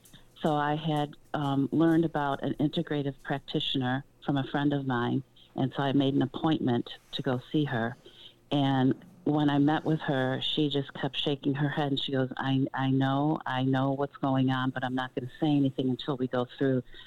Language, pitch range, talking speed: English, 120-140 Hz, 200 wpm